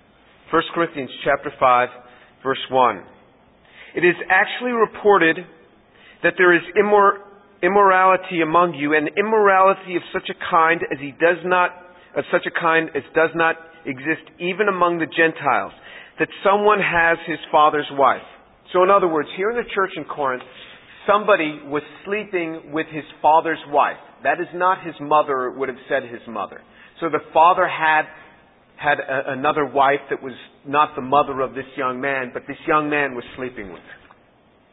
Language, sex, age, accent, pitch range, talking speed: English, male, 40-59, American, 145-180 Hz, 165 wpm